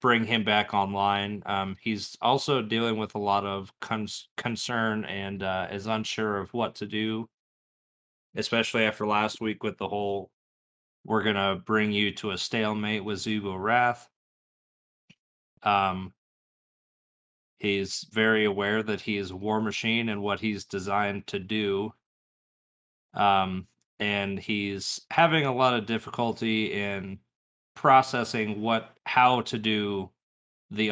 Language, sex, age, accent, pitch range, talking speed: English, male, 20-39, American, 100-115 Hz, 140 wpm